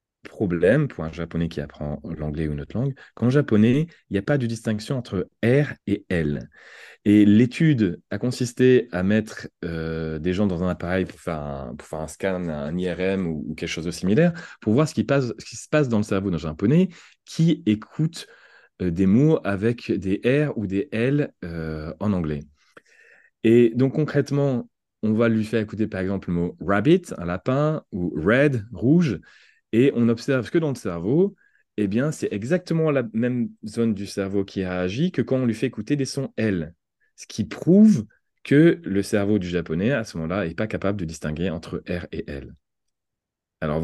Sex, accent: male, French